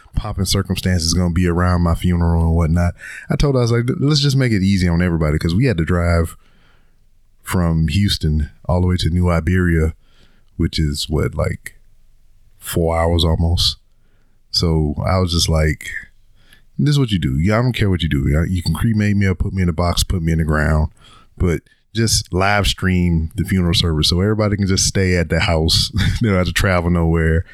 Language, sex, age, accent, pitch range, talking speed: English, male, 30-49, American, 80-100 Hz, 205 wpm